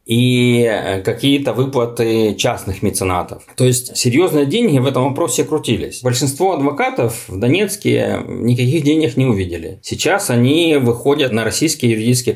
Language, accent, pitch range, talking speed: Russian, native, 115-140 Hz, 130 wpm